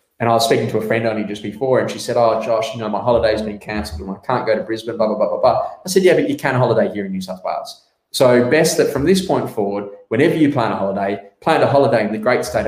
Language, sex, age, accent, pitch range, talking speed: English, male, 20-39, Australian, 105-135 Hz, 300 wpm